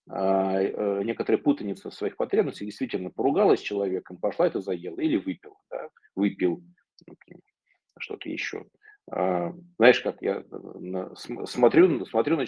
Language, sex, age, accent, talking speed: Russian, male, 40-59, native, 105 wpm